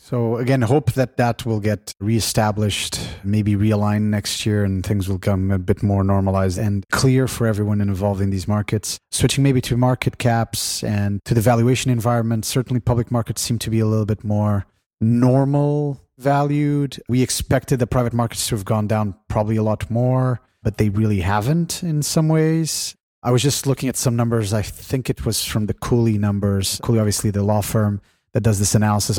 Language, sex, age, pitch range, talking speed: English, male, 30-49, 100-125 Hz, 195 wpm